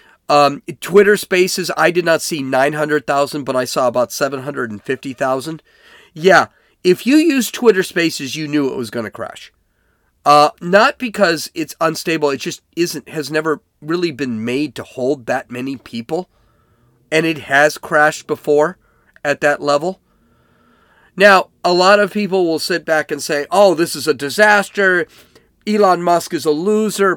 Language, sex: English, male